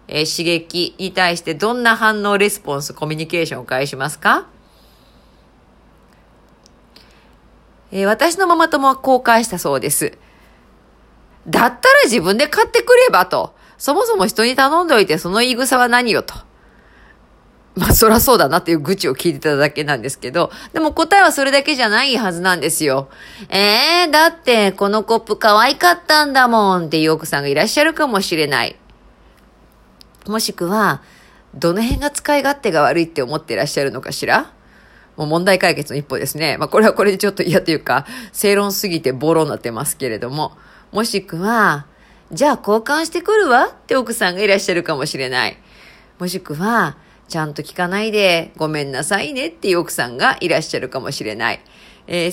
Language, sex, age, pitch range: Japanese, female, 40-59, 165-260 Hz